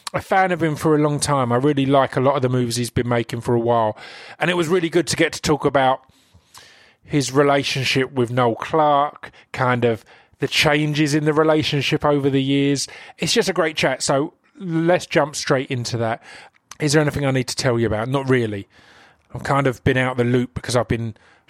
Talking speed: 225 wpm